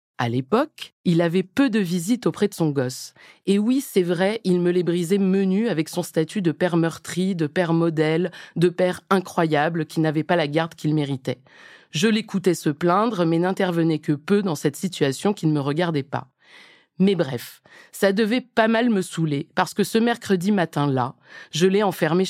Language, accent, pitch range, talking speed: French, French, 155-205 Hz, 190 wpm